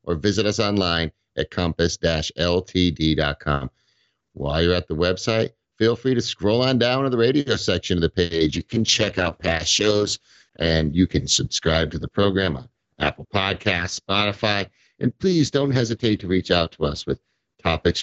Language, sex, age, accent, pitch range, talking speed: English, male, 50-69, American, 85-110 Hz, 175 wpm